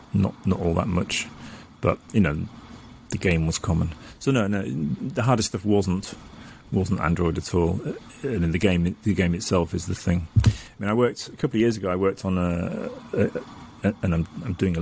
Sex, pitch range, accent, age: male, 85-100 Hz, British, 30-49